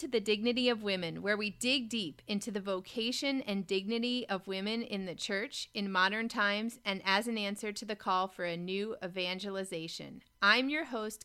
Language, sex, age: English, female, 30-49